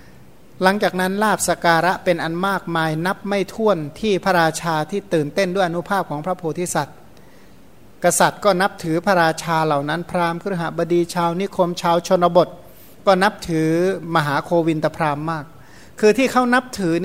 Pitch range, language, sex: 160-195 Hz, Thai, male